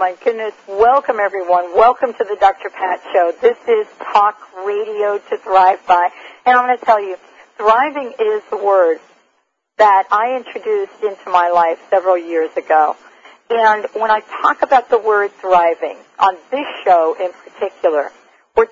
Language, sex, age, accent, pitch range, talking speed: English, female, 50-69, American, 185-250 Hz, 160 wpm